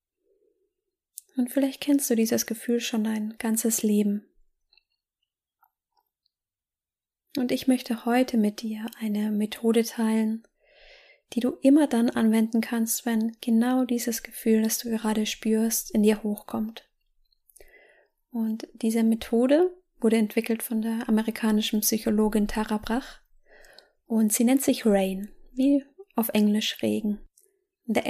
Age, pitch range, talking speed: 20-39, 220-260 Hz, 120 wpm